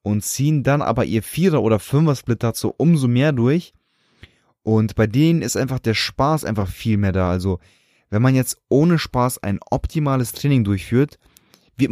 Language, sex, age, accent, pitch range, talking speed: German, male, 20-39, German, 110-135 Hz, 170 wpm